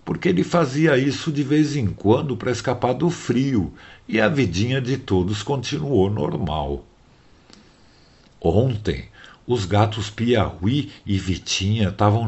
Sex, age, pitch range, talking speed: male, 60-79, 85-125 Hz, 125 wpm